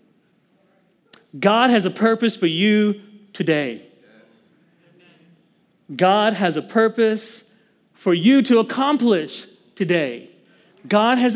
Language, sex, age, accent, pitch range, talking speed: English, male, 40-59, American, 160-220 Hz, 95 wpm